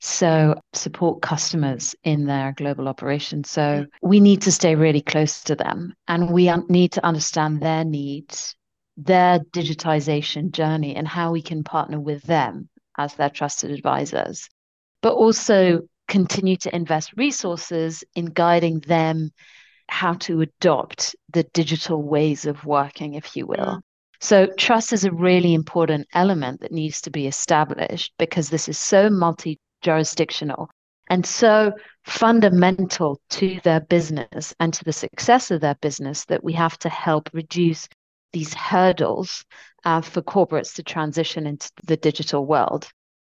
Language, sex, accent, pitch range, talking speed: English, female, British, 155-180 Hz, 145 wpm